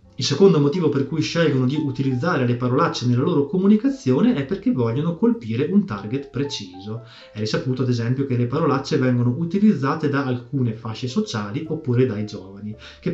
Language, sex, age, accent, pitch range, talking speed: Italian, male, 30-49, native, 120-170 Hz, 170 wpm